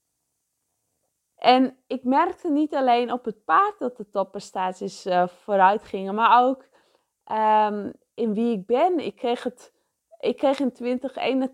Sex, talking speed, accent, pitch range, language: female, 145 wpm, Dutch, 195-265 Hz, English